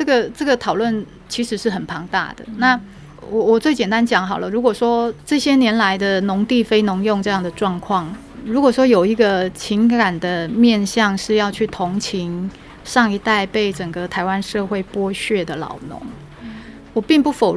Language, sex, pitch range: Chinese, female, 195-240 Hz